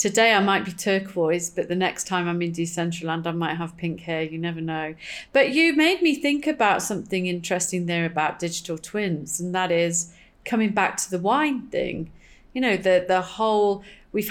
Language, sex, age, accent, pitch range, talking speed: English, female, 30-49, British, 175-215 Hz, 195 wpm